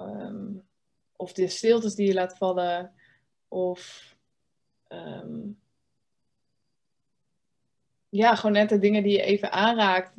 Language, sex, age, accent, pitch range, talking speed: Dutch, female, 20-39, Dutch, 185-205 Hz, 110 wpm